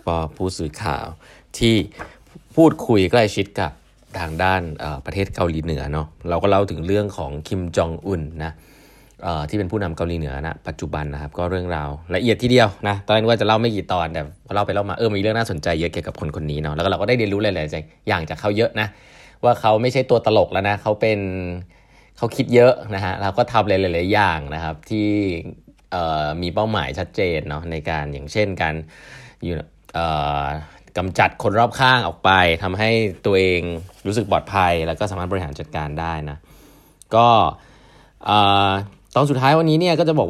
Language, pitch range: Thai, 80-110 Hz